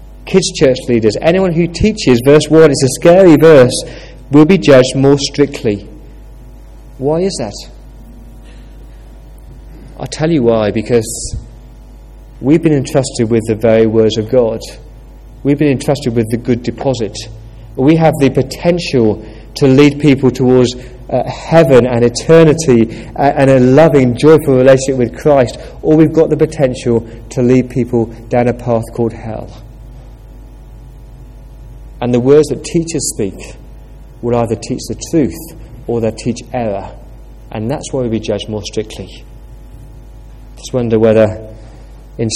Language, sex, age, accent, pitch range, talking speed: English, male, 30-49, British, 115-145 Hz, 140 wpm